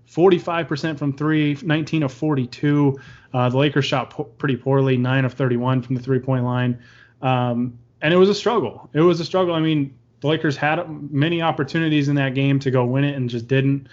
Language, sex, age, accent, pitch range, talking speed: English, male, 20-39, American, 125-150 Hz, 195 wpm